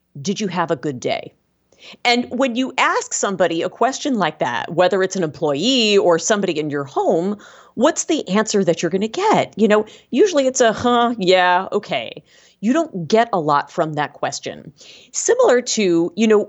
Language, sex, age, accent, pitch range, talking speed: English, female, 40-59, American, 165-235 Hz, 190 wpm